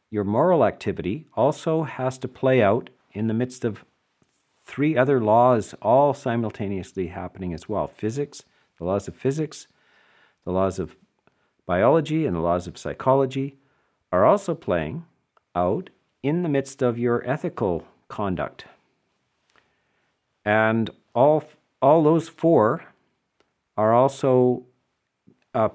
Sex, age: male, 50-69